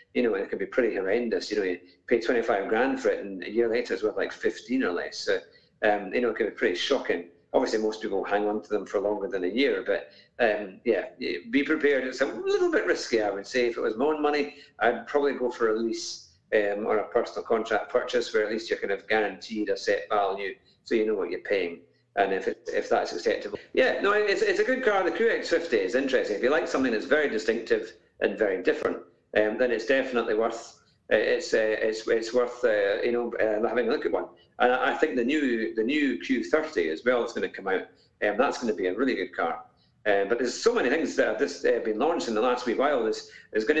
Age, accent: 50-69, British